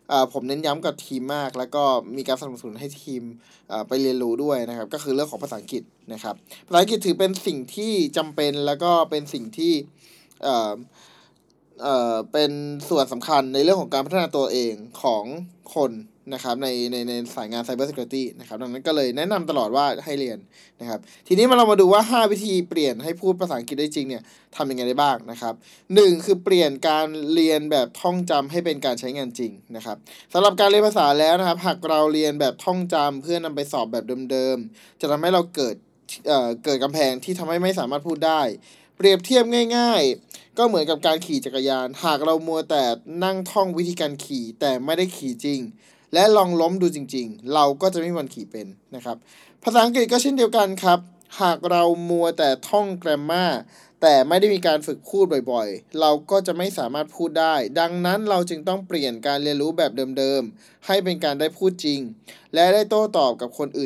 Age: 20-39